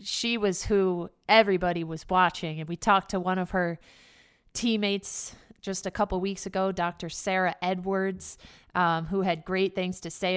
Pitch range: 175-200 Hz